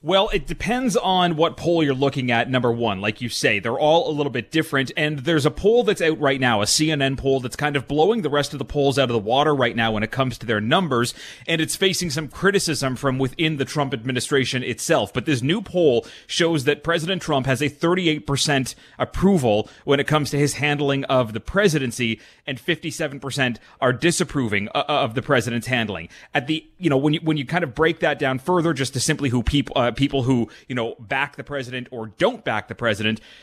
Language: English